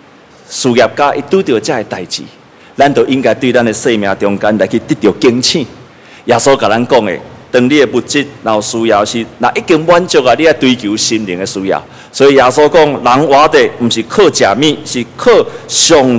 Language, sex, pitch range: Chinese, male, 110-145 Hz